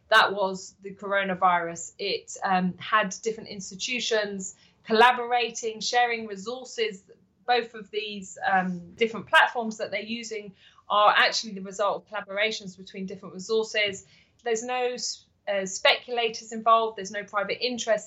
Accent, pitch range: British, 195-240 Hz